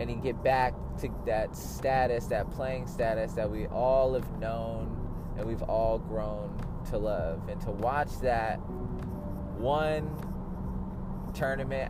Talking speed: 140 wpm